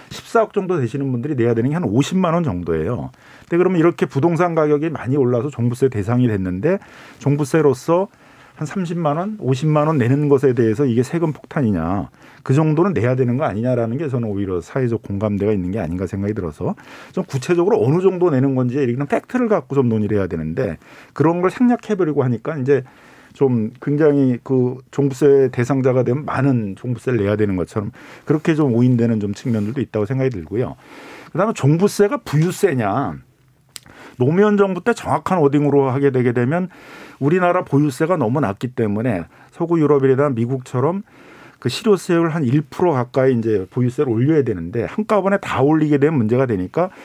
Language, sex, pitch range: Korean, male, 120-160 Hz